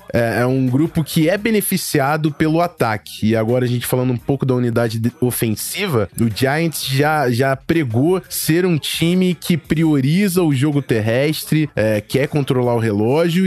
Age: 20-39